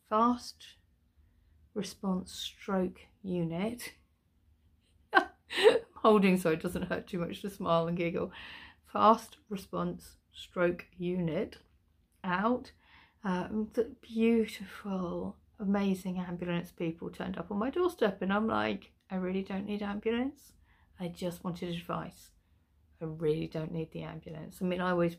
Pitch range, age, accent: 165-215 Hz, 30-49, British